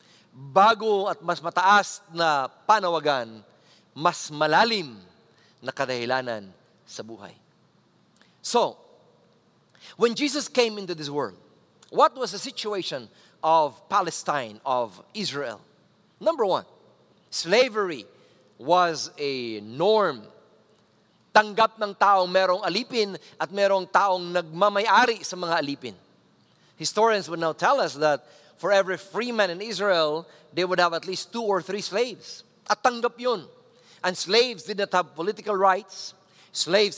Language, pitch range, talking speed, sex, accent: English, 160-215 Hz, 125 wpm, male, Filipino